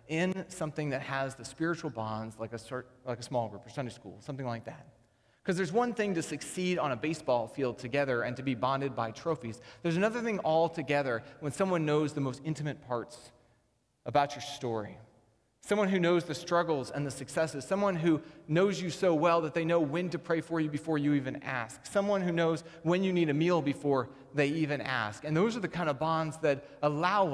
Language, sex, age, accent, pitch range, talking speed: English, male, 30-49, American, 125-165 Hz, 215 wpm